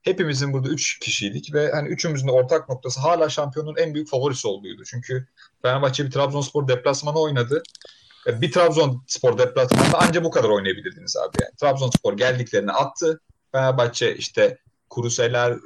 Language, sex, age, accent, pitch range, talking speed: Turkish, male, 40-59, native, 140-180 Hz, 140 wpm